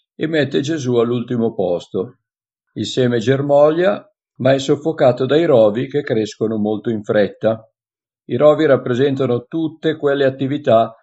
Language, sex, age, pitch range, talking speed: Italian, male, 50-69, 120-145 Hz, 130 wpm